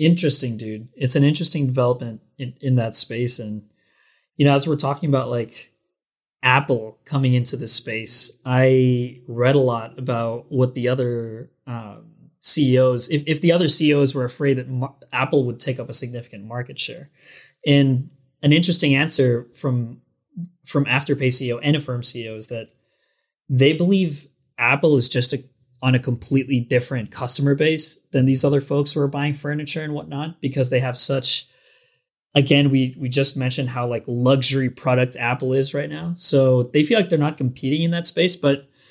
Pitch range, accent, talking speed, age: 125-145 Hz, American, 170 wpm, 20-39